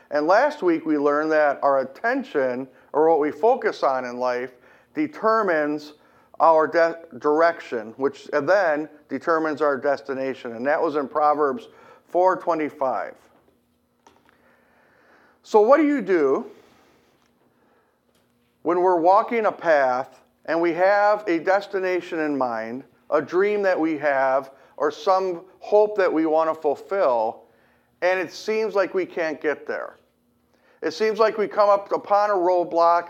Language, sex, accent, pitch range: English, male, American, 150-195 Hz